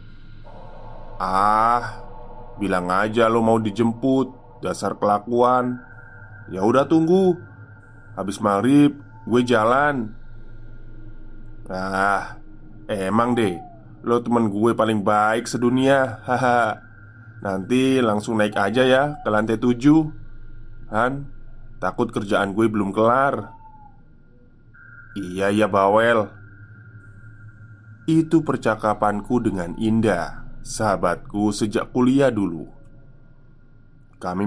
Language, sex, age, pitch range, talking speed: Indonesian, male, 20-39, 105-125 Hz, 90 wpm